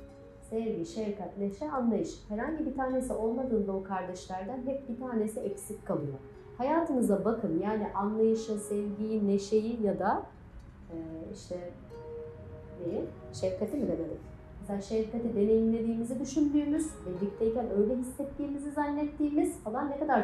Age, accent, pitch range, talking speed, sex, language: 40-59, native, 180-260 Hz, 115 wpm, female, Turkish